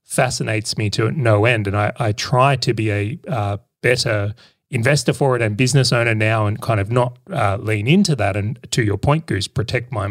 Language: English